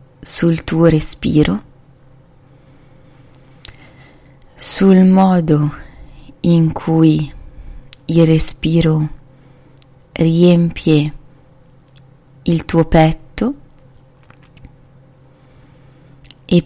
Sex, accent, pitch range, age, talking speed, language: female, native, 135-160 Hz, 20-39, 50 wpm, Italian